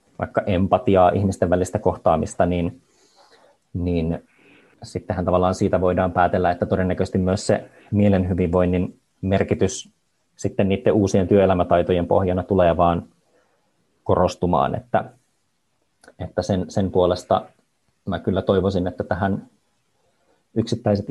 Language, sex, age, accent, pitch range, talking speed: Finnish, male, 30-49, native, 90-100 Hz, 110 wpm